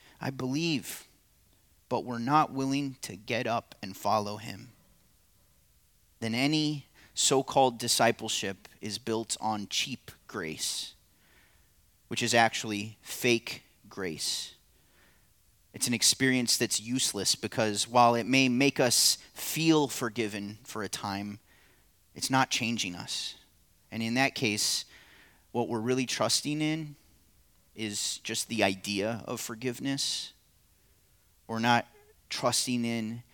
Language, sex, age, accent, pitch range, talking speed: English, male, 30-49, American, 100-135 Hz, 115 wpm